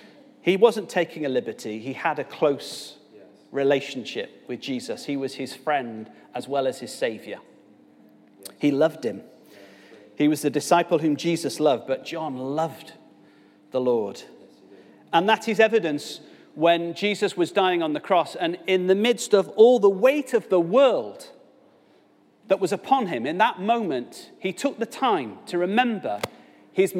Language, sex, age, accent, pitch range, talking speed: English, male, 40-59, British, 130-200 Hz, 160 wpm